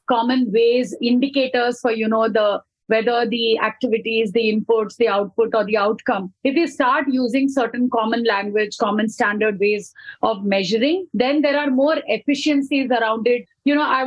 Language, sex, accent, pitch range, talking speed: English, female, Indian, 225-270 Hz, 165 wpm